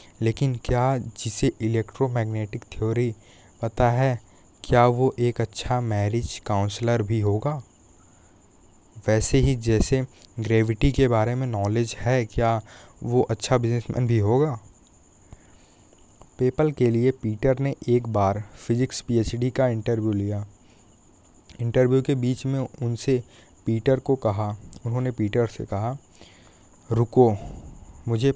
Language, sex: Hindi, male